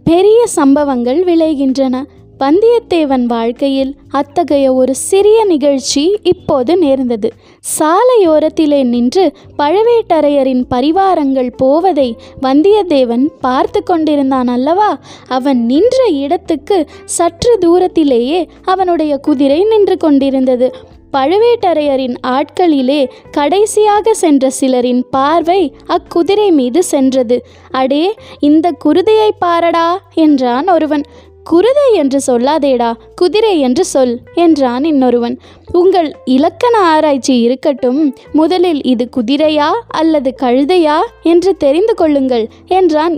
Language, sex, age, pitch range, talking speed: Tamil, female, 20-39, 270-355 Hz, 90 wpm